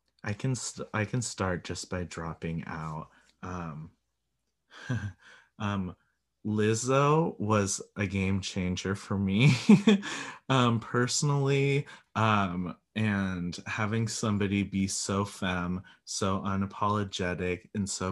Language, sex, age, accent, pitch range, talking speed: English, male, 30-49, American, 95-115 Hz, 105 wpm